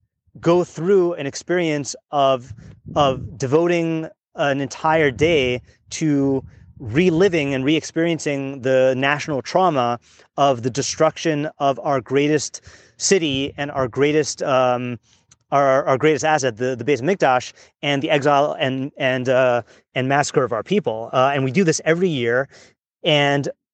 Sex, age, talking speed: male, 30-49, 140 wpm